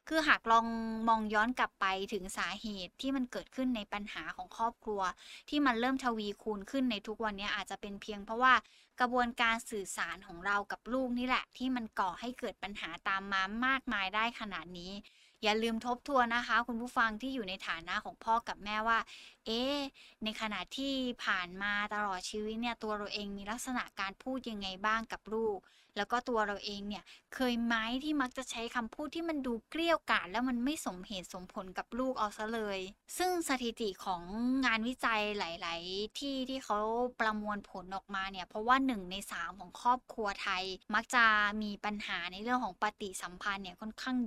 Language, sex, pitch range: Thai, female, 200-245 Hz